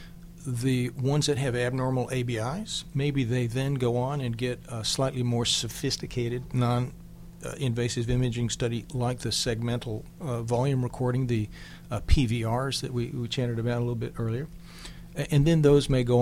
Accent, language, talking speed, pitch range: American, English, 160 wpm, 120-145 Hz